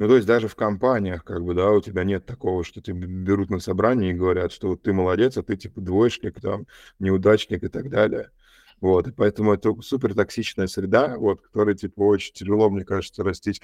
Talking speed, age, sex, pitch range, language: 210 wpm, 20-39, male, 95-105 Hz, Russian